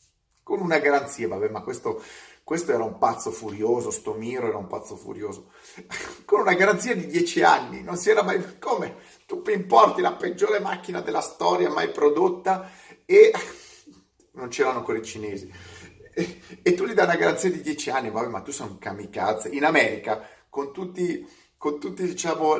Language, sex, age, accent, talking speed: Italian, male, 30-49, native, 175 wpm